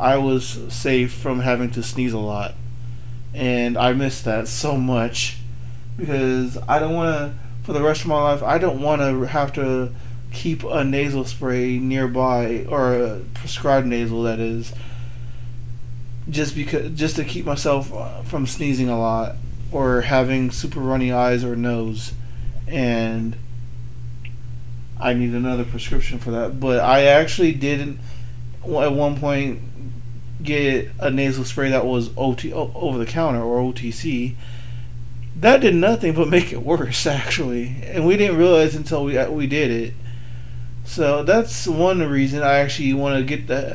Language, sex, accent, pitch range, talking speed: English, male, American, 120-140 Hz, 155 wpm